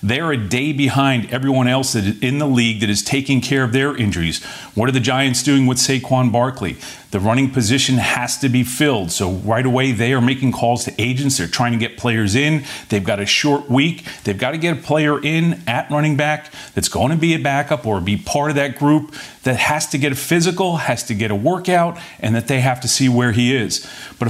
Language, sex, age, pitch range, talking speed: English, male, 40-59, 120-150 Hz, 230 wpm